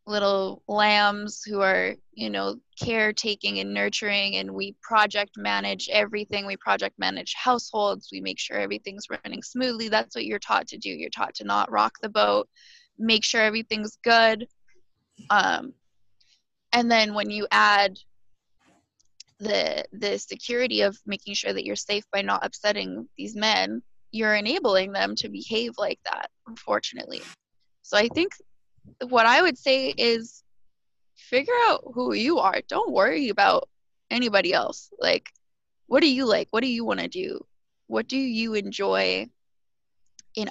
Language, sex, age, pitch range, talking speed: English, female, 10-29, 200-245 Hz, 155 wpm